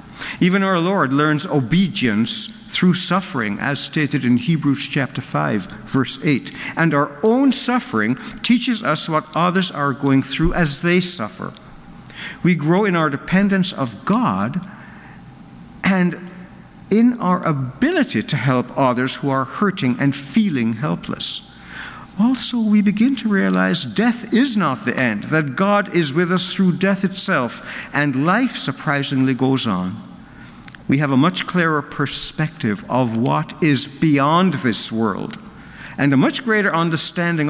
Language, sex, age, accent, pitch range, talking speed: English, male, 60-79, American, 135-190 Hz, 140 wpm